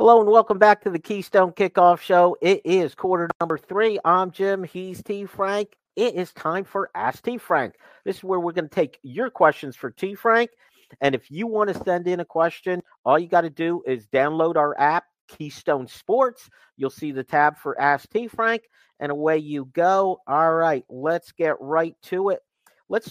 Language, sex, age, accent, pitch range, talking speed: English, male, 50-69, American, 145-195 Hz, 205 wpm